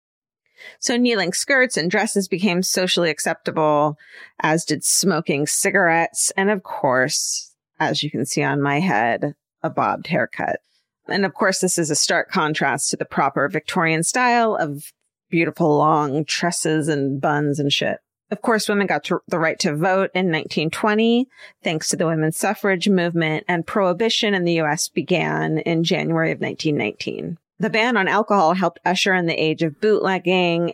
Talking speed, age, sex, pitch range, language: 160 wpm, 40-59, female, 155-195 Hz, English